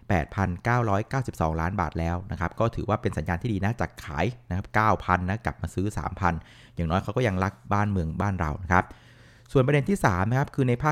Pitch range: 95-120 Hz